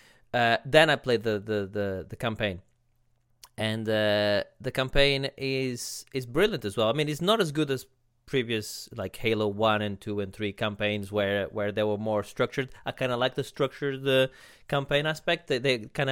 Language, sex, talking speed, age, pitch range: English, male, 195 wpm, 20-39, 115-145 Hz